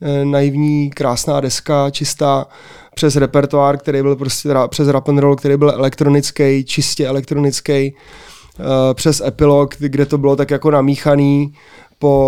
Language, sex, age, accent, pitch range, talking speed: Czech, male, 20-39, native, 135-150 Hz, 125 wpm